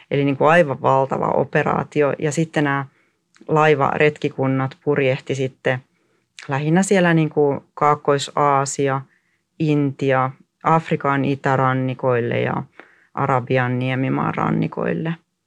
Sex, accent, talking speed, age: female, native, 95 wpm, 30-49